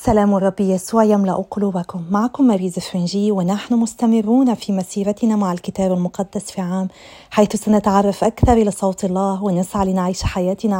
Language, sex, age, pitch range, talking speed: Arabic, female, 30-49, 185-210 Hz, 145 wpm